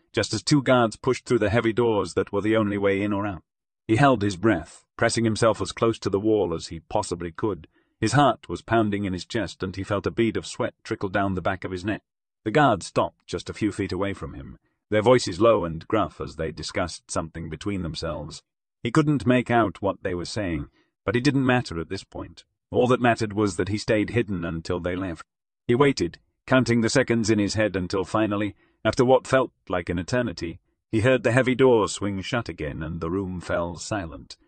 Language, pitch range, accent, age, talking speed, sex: English, 90-115 Hz, British, 40-59, 225 wpm, male